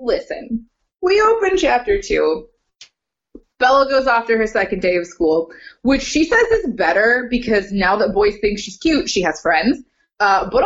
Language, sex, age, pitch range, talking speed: English, female, 20-39, 190-290 Hz, 170 wpm